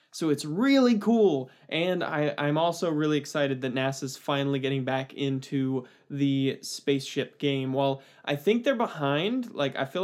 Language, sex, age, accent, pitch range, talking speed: English, male, 20-39, American, 135-155 Hz, 160 wpm